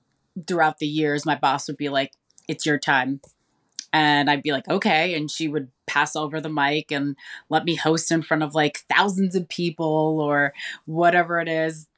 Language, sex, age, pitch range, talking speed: English, female, 20-39, 150-195 Hz, 190 wpm